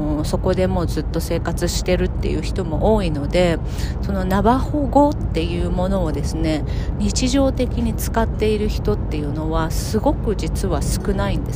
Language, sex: Japanese, female